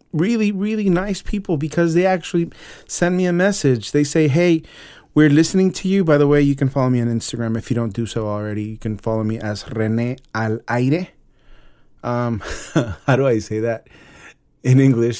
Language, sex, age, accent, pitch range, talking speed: English, male, 30-49, American, 115-160 Hz, 195 wpm